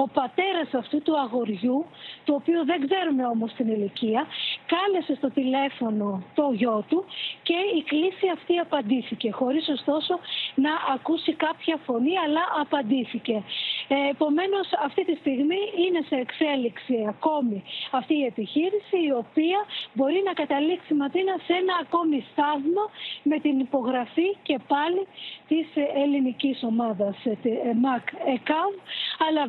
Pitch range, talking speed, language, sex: 255-340 Hz, 125 wpm, Greek, female